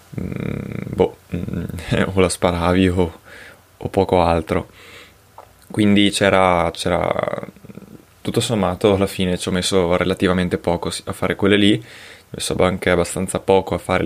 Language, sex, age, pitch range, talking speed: Italian, male, 20-39, 90-100 Hz, 135 wpm